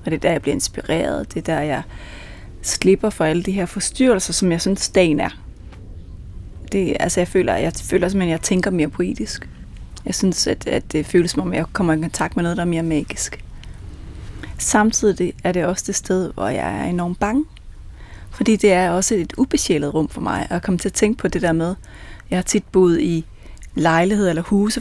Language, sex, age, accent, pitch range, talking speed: Danish, female, 30-49, native, 170-210 Hz, 220 wpm